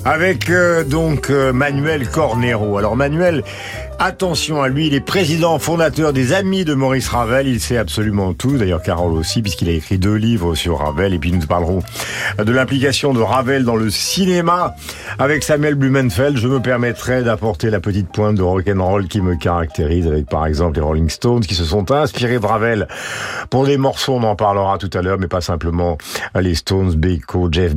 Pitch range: 95-135 Hz